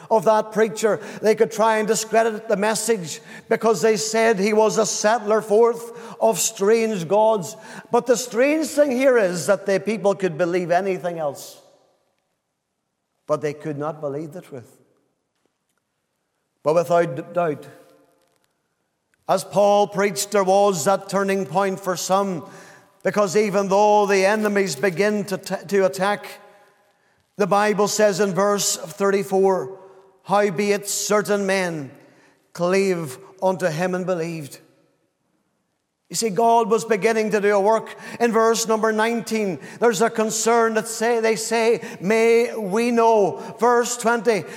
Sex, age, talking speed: male, 50-69, 135 wpm